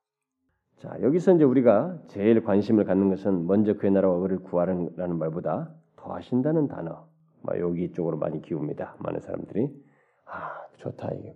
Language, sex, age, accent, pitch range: Korean, male, 40-59, native, 90-145 Hz